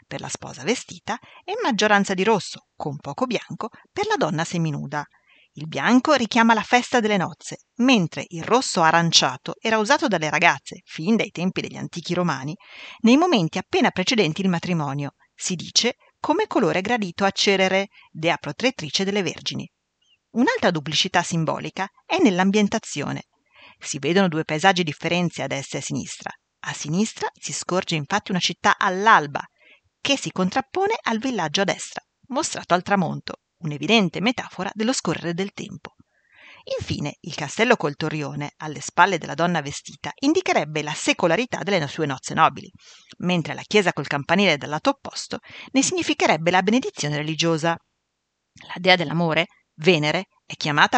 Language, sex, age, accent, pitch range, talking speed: Italian, female, 40-59, native, 165-230 Hz, 150 wpm